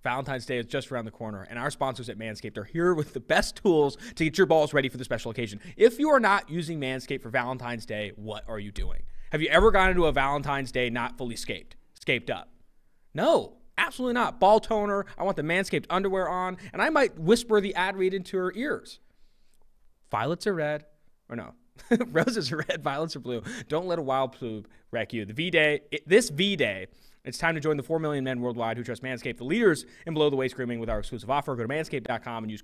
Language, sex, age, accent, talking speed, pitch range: English, male, 20-39, American, 230 wpm, 125-185 Hz